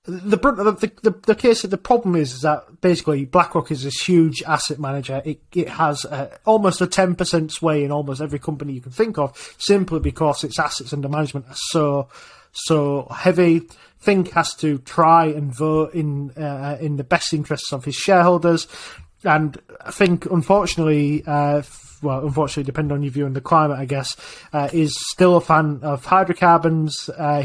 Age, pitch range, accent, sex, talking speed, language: 20-39, 145-170 Hz, British, male, 185 wpm, English